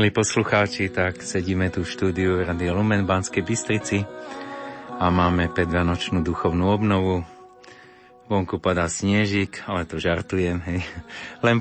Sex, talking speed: male, 130 wpm